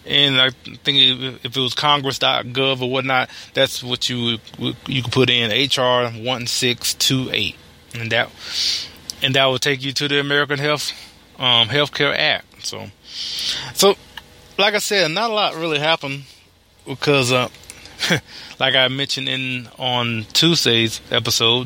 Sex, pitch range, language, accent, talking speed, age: male, 115-140 Hz, English, American, 150 wpm, 20-39